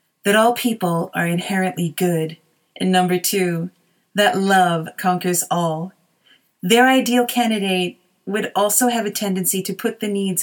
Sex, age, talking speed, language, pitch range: female, 30-49, 145 wpm, English, 175-205 Hz